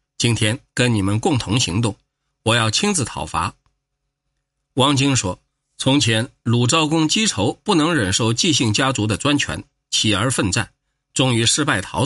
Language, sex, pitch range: Chinese, male, 105-140 Hz